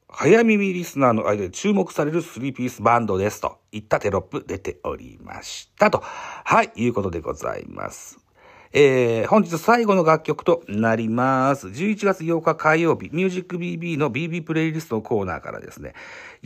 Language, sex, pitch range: Japanese, male, 125-200 Hz